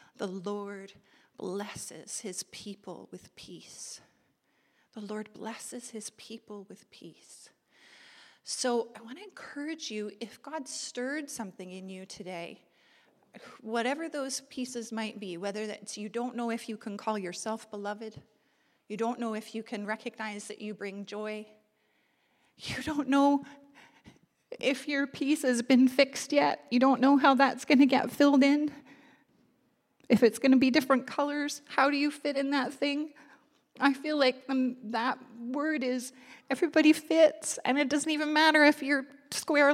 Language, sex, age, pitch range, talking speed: English, female, 40-59, 215-285 Hz, 160 wpm